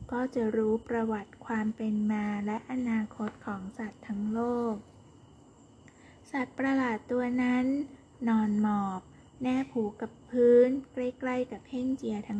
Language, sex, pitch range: Thai, female, 215-255 Hz